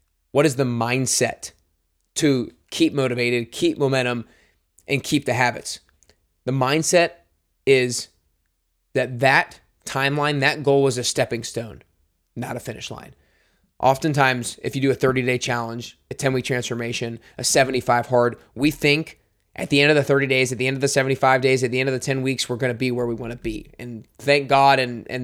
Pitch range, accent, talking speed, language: 115-140 Hz, American, 190 wpm, English